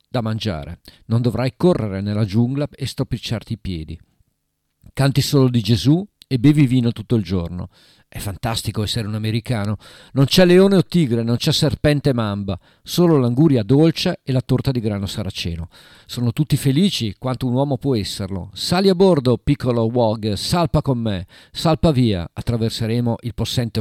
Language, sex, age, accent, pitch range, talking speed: Italian, male, 50-69, native, 105-145 Hz, 165 wpm